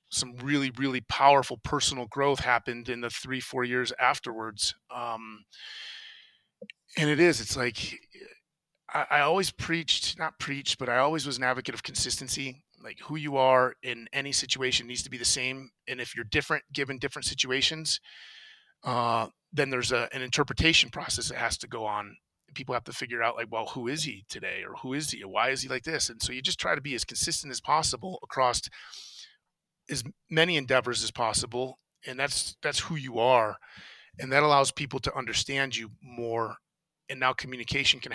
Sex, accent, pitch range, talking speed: male, American, 115-145 Hz, 185 wpm